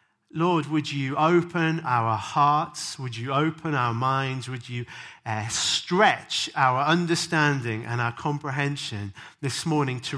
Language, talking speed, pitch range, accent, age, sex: English, 135 wpm, 115-155 Hz, British, 40-59, male